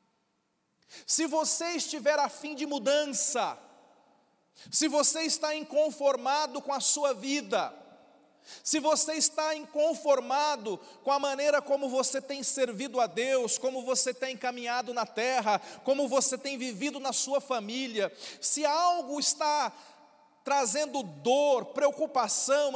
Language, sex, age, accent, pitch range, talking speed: Portuguese, male, 40-59, Brazilian, 235-295 Hz, 120 wpm